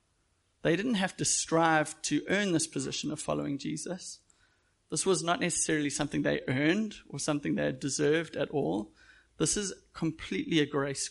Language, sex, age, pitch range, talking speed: English, male, 30-49, 145-165 Hz, 160 wpm